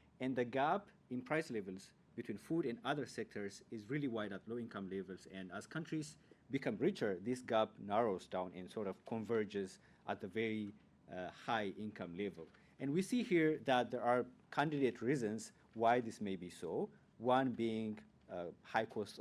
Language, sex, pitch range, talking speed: English, male, 95-130 Hz, 180 wpm